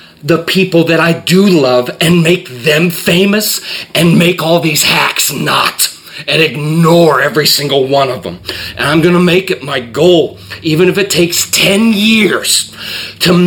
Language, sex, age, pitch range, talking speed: English, male, 40-59, 130-170 Hz, 170 wpm